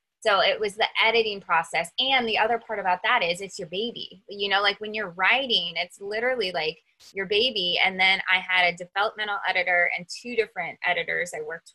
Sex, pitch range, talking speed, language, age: female, 170-215 Hz, 205 wpm, English, 20-39